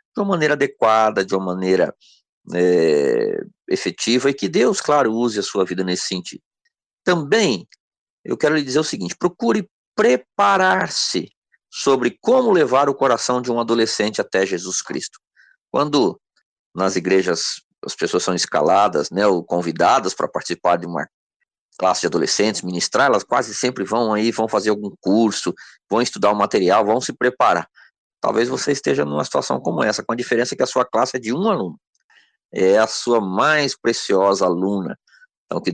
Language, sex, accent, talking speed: Portuguese, male, Brazilian, 165 wpm